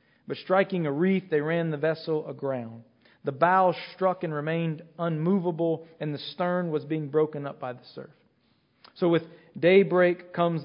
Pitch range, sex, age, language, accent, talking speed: 150-180 Hz, male, 40-59, English, American, 165 wpm